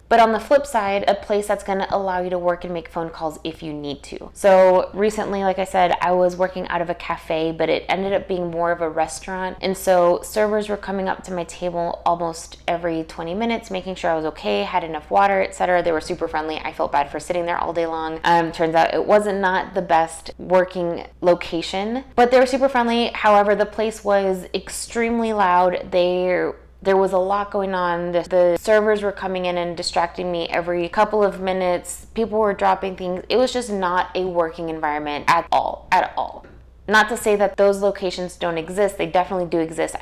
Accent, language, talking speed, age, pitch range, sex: American, English, 220 wpm, 20-39, 170-200 Hz, female